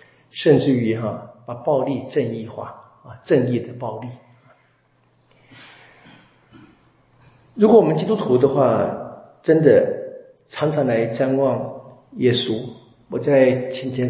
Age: 50-69